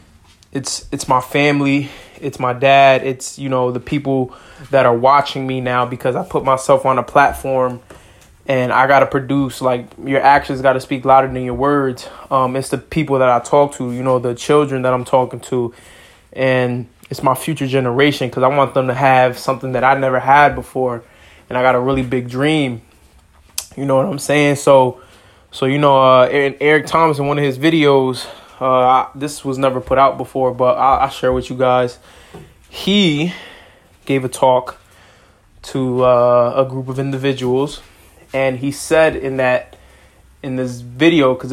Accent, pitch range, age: American, 125-140 Hz, 20-39